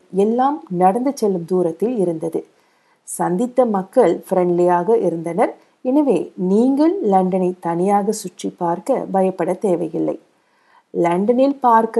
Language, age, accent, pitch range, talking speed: Tamil, 50-69, native, 175-245 Hz, 95 wpm